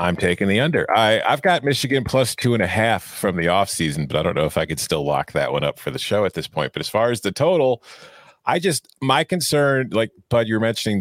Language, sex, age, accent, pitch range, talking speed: English, male, 30-49, American, 90-135 Hz, 260 wpm